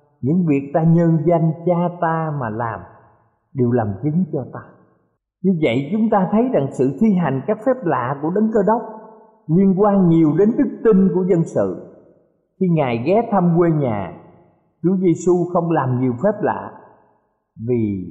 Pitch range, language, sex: 130-185 Hz, Thai, male